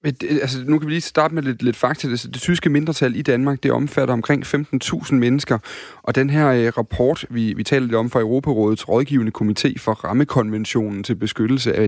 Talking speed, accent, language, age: 190 wpm, native, Danish, 30-49